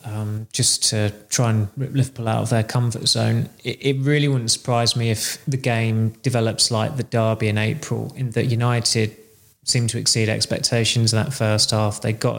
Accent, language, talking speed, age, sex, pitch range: British, English, 200 wpm, 20-39, male, 110-125 Hz